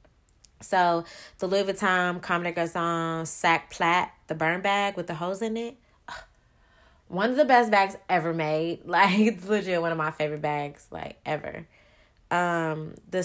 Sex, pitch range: female, 160-195 Hz